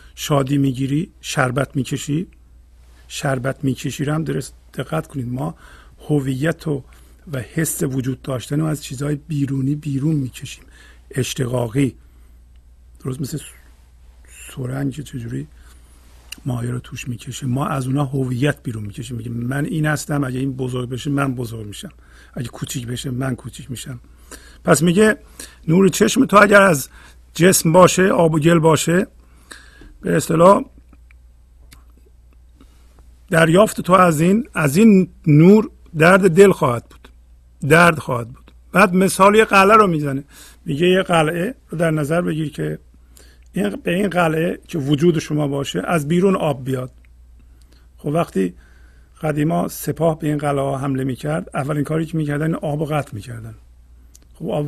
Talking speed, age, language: 140 wpm, 50-69, Persian